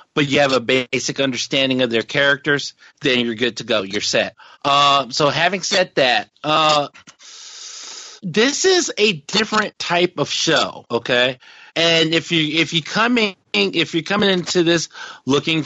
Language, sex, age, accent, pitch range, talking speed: English, male, 50-69, American, 130-160 Hz, 160 wpm